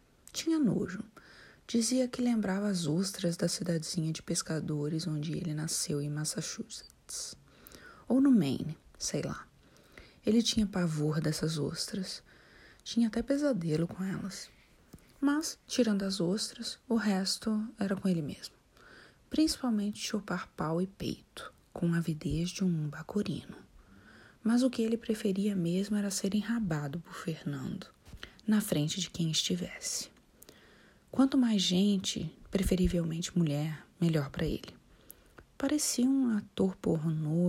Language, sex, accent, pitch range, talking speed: Portuguese, female, Brazilian, 160-220 Hz, 130 wpm